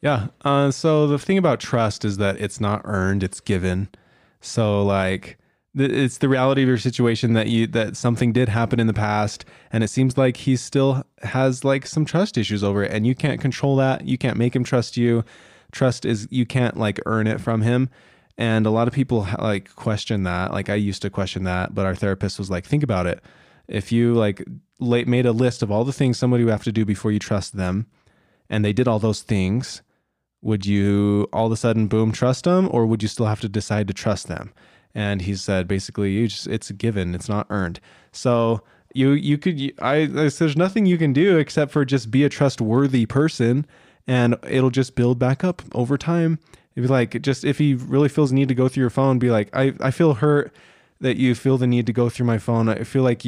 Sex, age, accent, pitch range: male, 20-39, American, 105-130 Hz